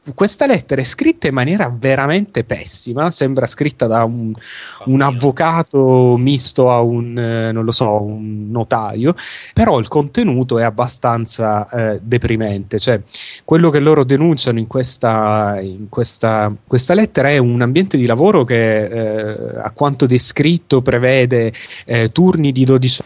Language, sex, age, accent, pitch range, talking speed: Italian, male, 30-49, native, 115-140 Hz, 145 wpm